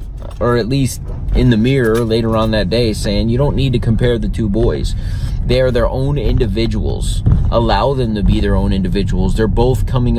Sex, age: male, 30-49